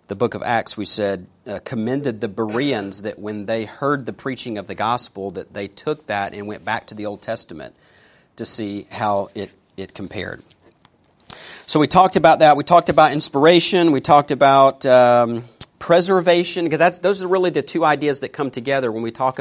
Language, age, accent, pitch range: English, 40-59, American, 120-155 Hz